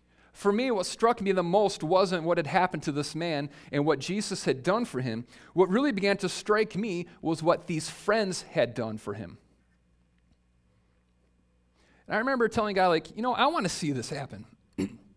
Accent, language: American, English